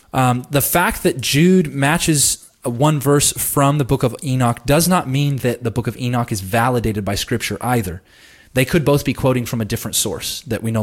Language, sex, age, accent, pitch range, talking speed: English, male, 20-39, American, 115-145 Hz, 210 wpm